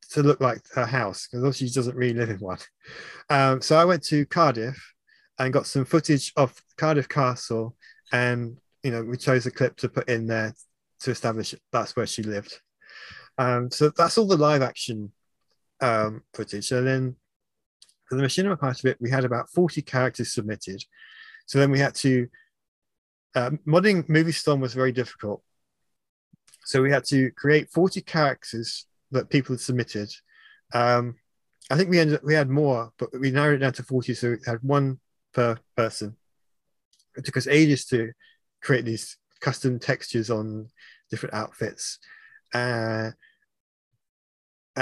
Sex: male